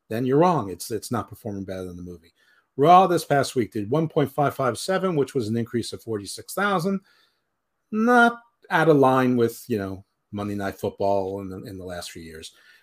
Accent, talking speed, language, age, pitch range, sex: American, 185 wpm, English, 50-69, 105-145 Hz, male